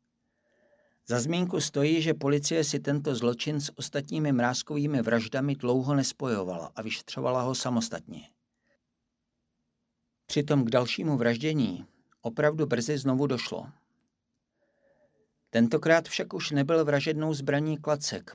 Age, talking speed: 50-69, 110 wpm